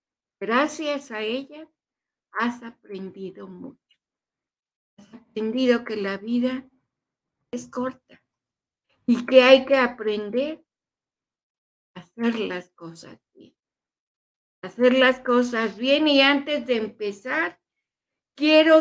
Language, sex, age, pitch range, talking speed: Spanish, female, 50-69, 210-265 Hz, 100 wpm